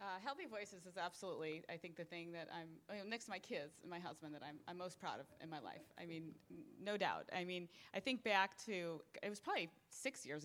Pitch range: 160-195 Hz